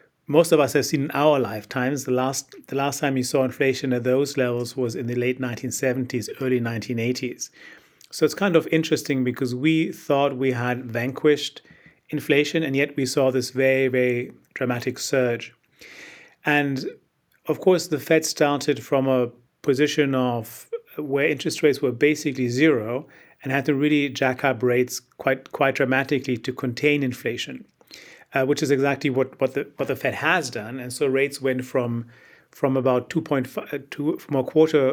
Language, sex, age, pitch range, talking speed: English, male, 40-59, 125-150 Hz, 170 wpm